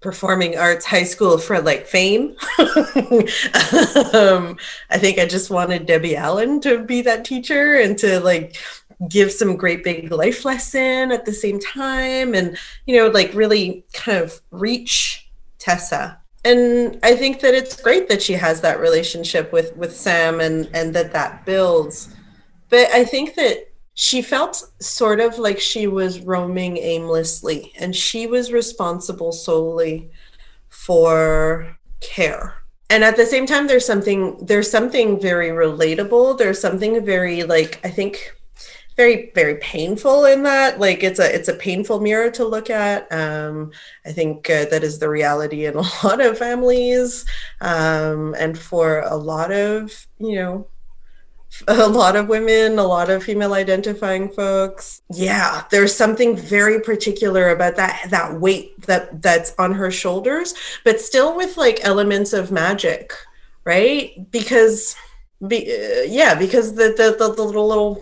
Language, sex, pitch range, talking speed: English, female, 175-240 Hz, 155 wpm